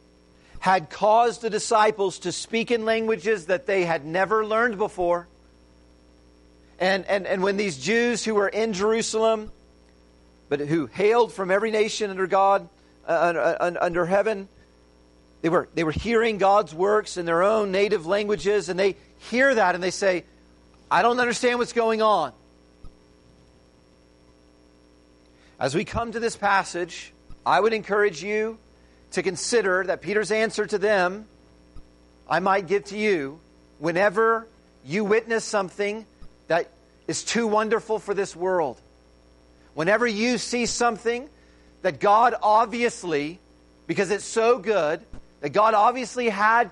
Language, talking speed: English, 140 wpm